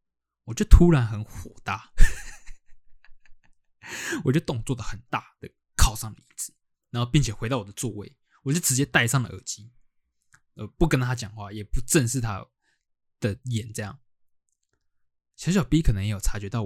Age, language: 20-39, Chinese